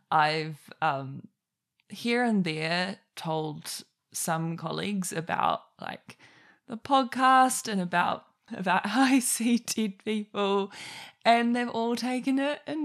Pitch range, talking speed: 165-240 Hz, 120 wpm